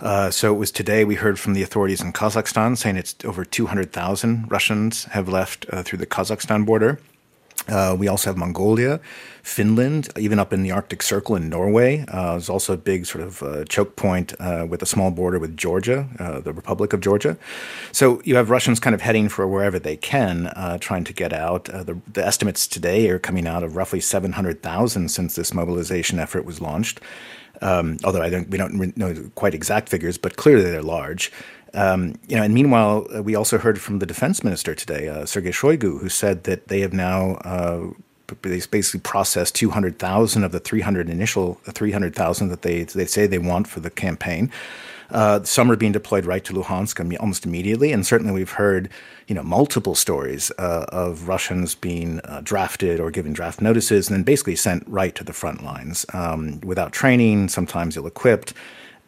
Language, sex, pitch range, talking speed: English, male, 90-105 Hz, 200 wpm